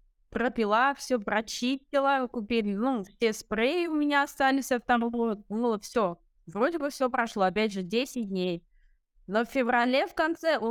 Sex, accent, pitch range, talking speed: female, native, 205-245 Hz, 155 wpm